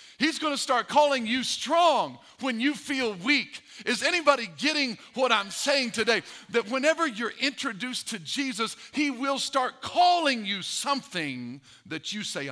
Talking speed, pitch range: 160 wpm, 155-225 Hz